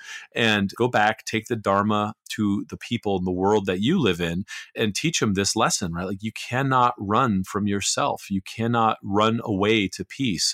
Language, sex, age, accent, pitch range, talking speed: English, male, 30-49, American, 95-120 Hz, 195 wpm